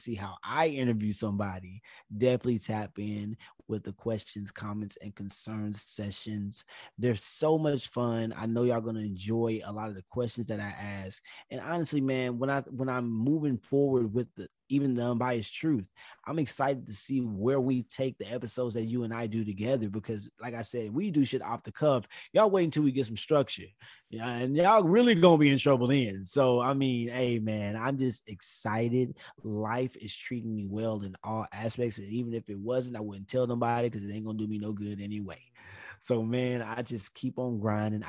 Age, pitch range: 20-39, 100-125 Hz